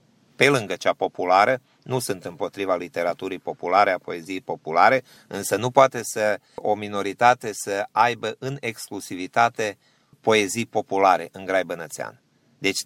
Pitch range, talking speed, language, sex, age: 95-125 Hz, 125 wpm, Romanian, male, 30-49